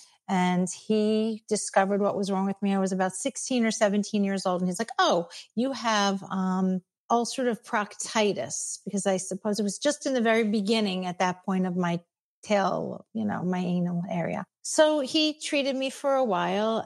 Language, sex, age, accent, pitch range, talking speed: English, female, 50-69, American, 185-215 Hz, 190 wpm